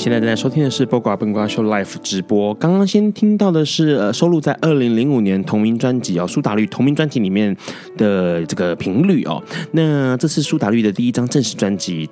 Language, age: Chinese, 20-39